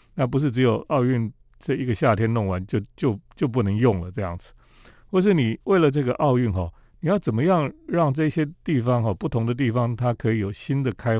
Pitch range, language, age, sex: 105-145 Hz, Chinese, 40-59, male